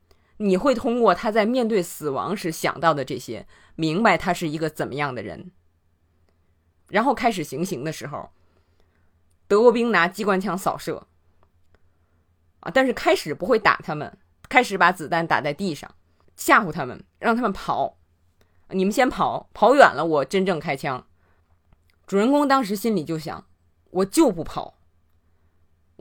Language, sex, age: Chinese, female, 20-39